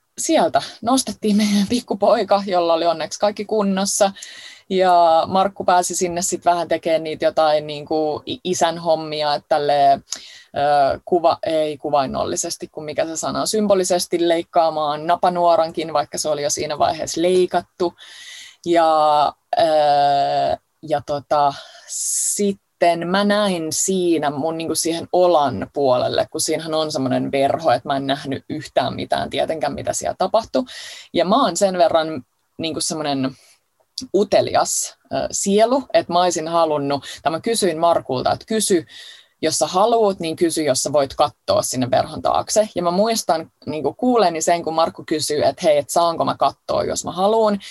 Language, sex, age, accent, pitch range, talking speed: Finnish, female, 20-39, native, 155-205 Hz, 145 wpm